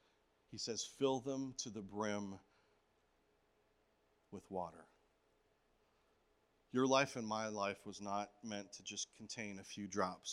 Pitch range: 105-140 Hz